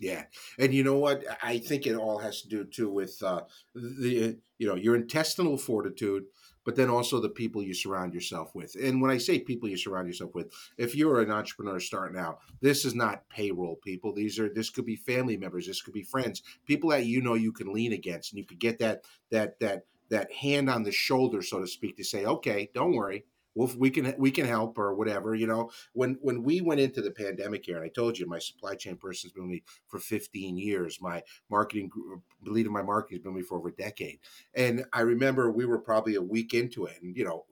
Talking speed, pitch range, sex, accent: 240 wpm, 100-125 Hz, male, American